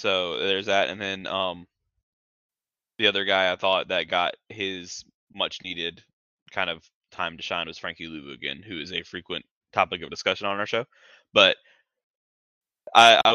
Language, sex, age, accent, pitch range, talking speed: English, male, 20-39, American, 95-120 Hz, 165 wpm